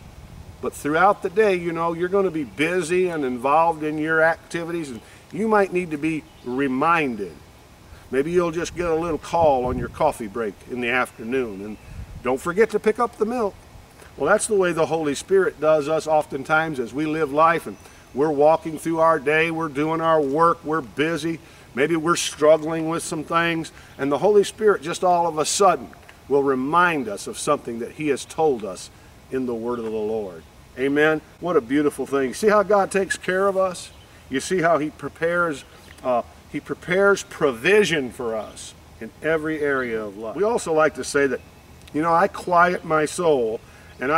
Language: English